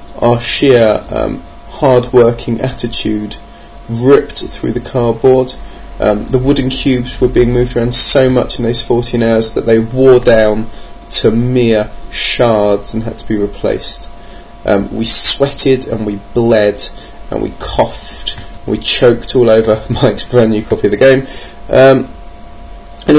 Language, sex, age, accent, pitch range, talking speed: English, male, 20-39, British, 105-130 Hz, 150 wpm